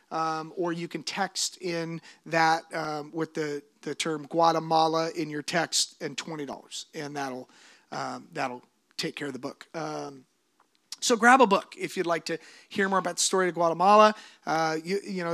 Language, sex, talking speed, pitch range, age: English, male, 185 wpm, 160-210 Hz, 30-49